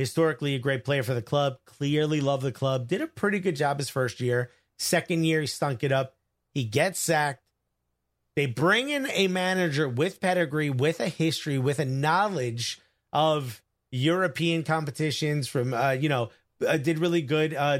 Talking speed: 180 wpm